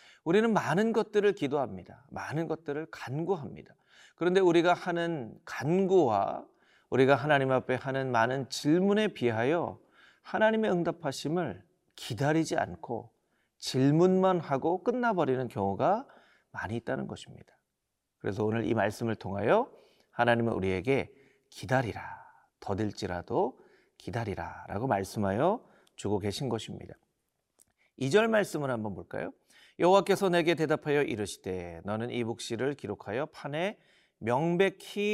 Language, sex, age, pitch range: Korean, male, 40-59, 115-190 Hz